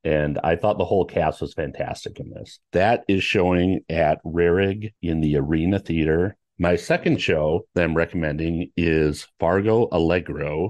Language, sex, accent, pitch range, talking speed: English, male, American, 85-110 Hz, 155 wpm